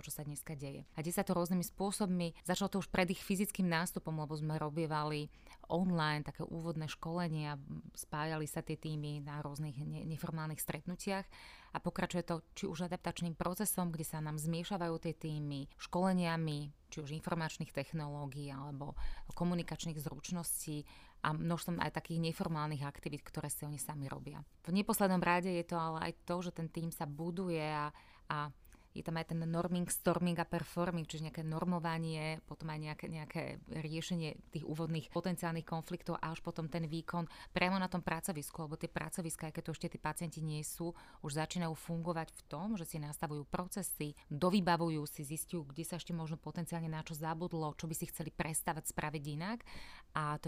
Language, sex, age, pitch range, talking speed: Slovak, female, 30-49, 155-175 Hz, 175 wpm